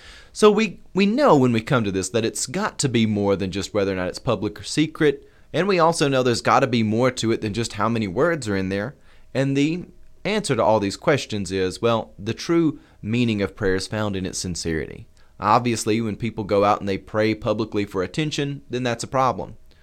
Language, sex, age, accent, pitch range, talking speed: English, male, 30-49, American, 105-135 Hz, 235 wpm